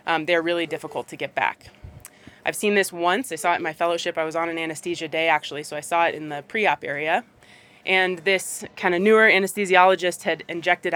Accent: American